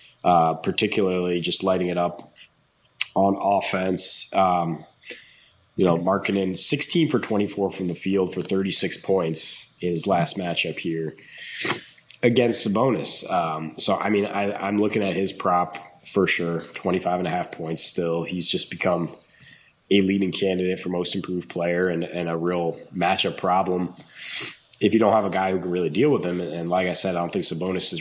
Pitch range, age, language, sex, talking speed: 85-100 Hz, 20-39, English, male, 180 wpm